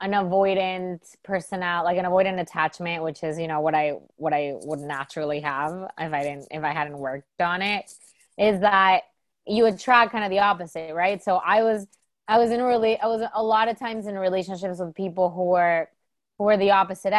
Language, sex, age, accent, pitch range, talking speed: English, female, 20-39, American, 175-225 Hz, 210 wpm